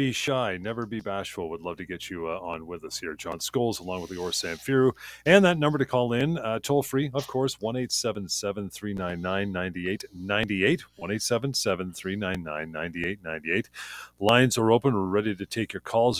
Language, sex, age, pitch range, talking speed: English, male, 40-59, 95-125 Hz, 180 wpm